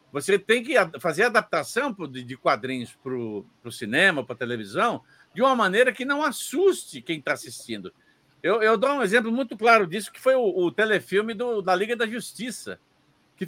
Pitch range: 155-235 Hz